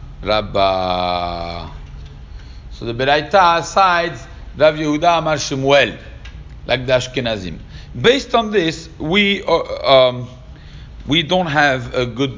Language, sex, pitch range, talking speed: English, male, 120-170 Hz, 85 wpm